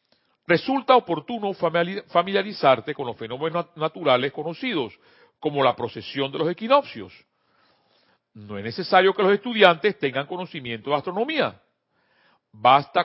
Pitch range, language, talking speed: 130-210 Hz, Spanish, 115 wpm